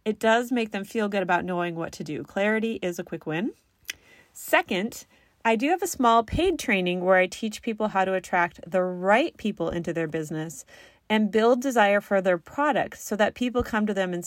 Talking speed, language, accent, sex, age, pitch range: 210 wpm, English, American, female, 30-49, 185-255 Hz